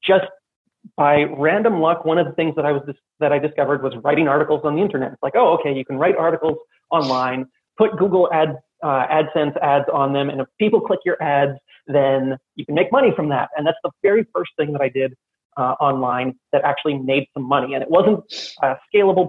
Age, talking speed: 30-49, 225 wpm